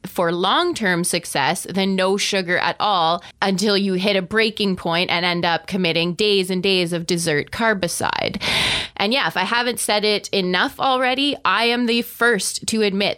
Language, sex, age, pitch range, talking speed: English, female, 20-39, 180-230 Hz, 180 wpm